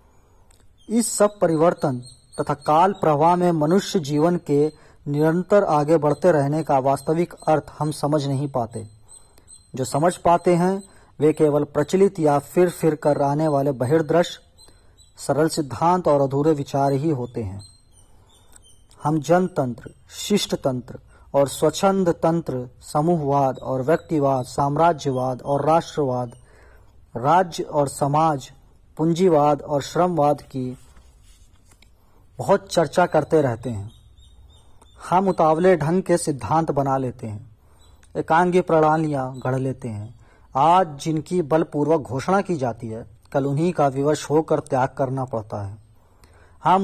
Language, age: Hindi, 40-59